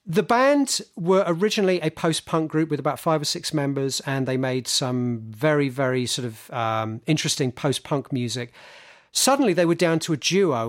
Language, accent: English, British